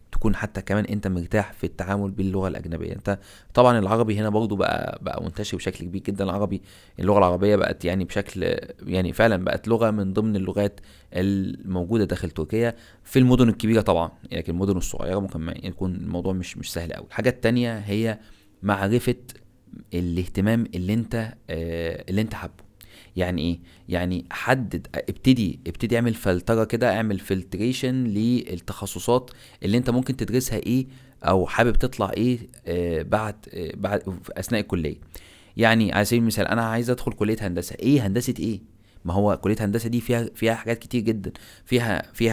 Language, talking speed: Arabic, 160 wpm